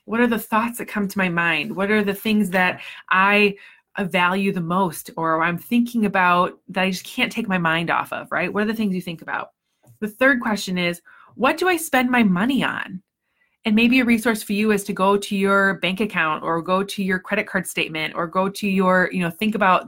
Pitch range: 180-235 Hz